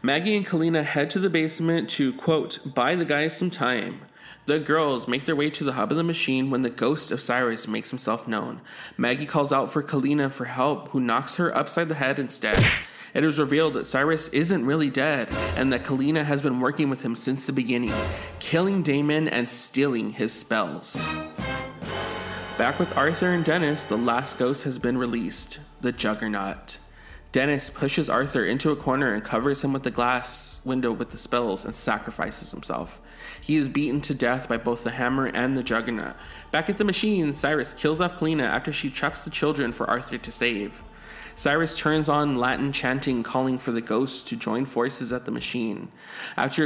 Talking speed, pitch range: 190 wpm, 125-155 Hz